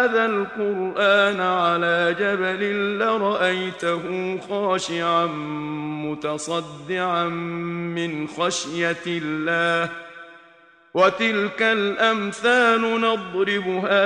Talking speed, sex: 55 wpm, male